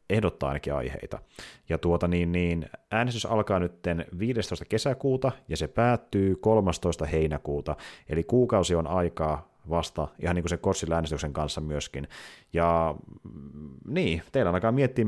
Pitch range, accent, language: 80-95 Hz, native, Finnish